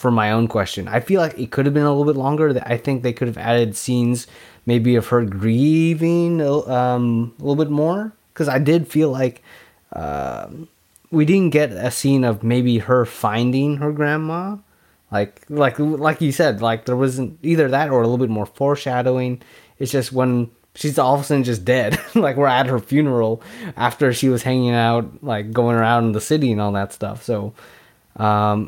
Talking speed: 200 wpm